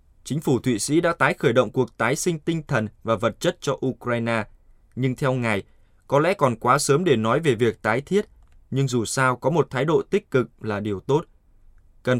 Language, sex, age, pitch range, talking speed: Vietnamese, male, 20-39, 110-145 Hz, 220 wpm